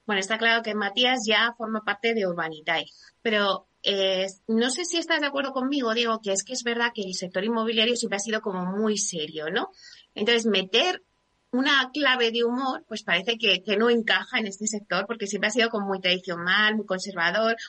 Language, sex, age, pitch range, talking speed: Spanish, female, 30-49, 200-245 Hz, 205 wpm